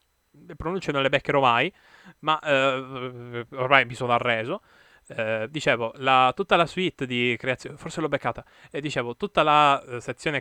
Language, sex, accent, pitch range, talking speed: Italian, male, native, 115-155 Hz, 160 wpm